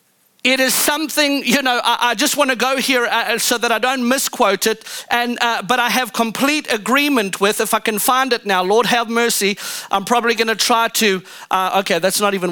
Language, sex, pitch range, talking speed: English, male, 225-280 Hz, 205 wpm